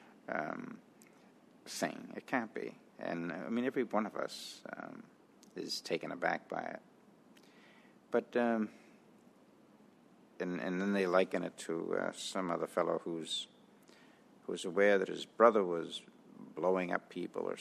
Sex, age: male, 60-79